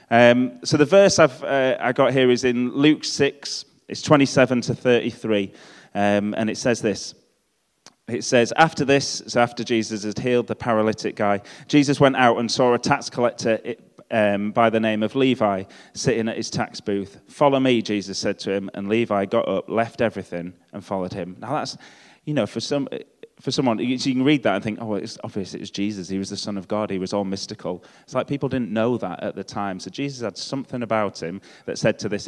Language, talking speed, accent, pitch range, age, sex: English, 215 wpm, British, 100-125 Hz, 30-49, male